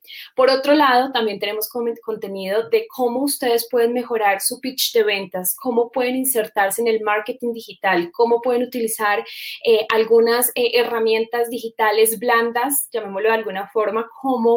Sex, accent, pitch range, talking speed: female, Colombian, 210-240 Hz, 150 wpm